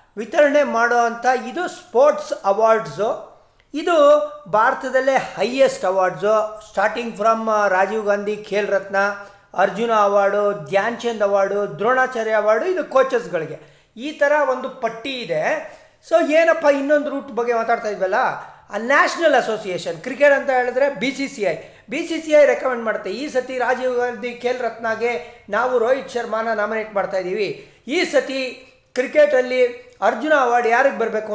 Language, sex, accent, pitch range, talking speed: Kannada, male, native, 205-270 Hz, 130 wpm